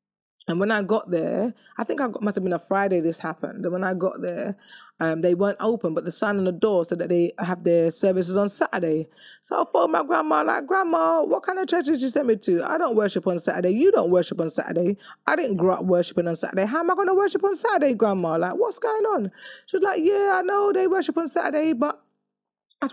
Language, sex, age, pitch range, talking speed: English, female, 20-39, 175-245 Hz, 255 wpm